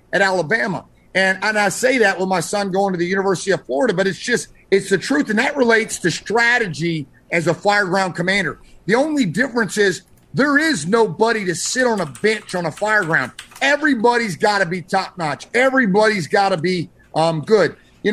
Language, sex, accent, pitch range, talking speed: English, male, American, 190-255 Hz, 200 wpm